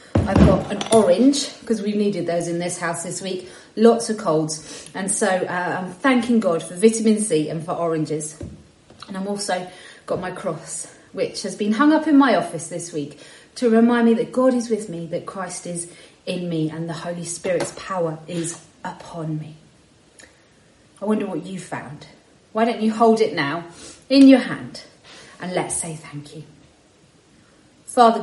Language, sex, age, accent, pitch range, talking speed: English, female, 30-49, British, 165-225 Hz, 180 wpm